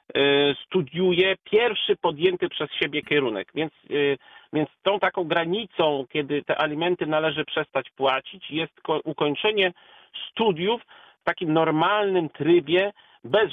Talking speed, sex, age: 110 wpm, male, 50-69